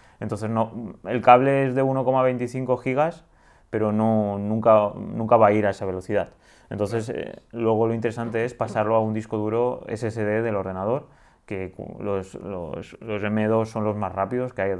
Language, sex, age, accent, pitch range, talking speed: Spanish, male, 20-39, Spanish, 95-110 Hz, 175 wpm